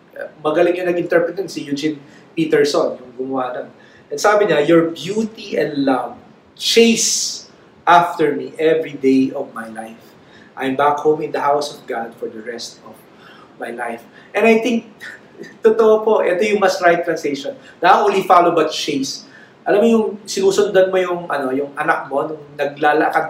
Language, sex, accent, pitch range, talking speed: English, male, Filipino, 140-195 Hz, 165 wpm